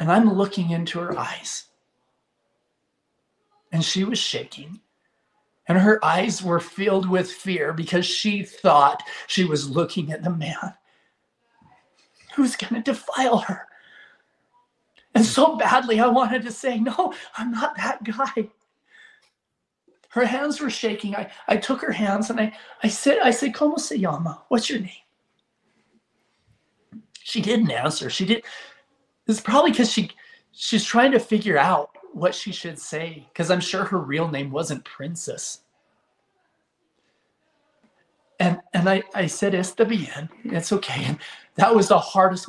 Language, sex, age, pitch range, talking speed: English, male, 40-59, 180-250 Hz, 145 wpm